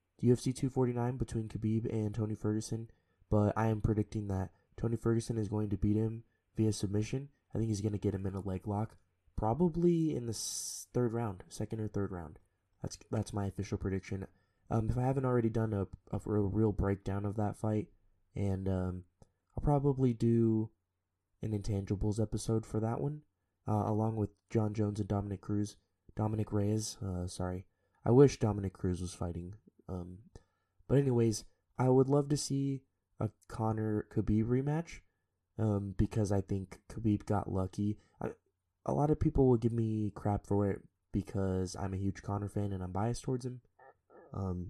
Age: 20-39